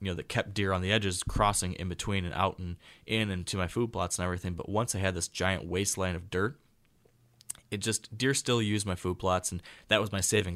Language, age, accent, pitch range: English, 20-39, American, 90-105 Hz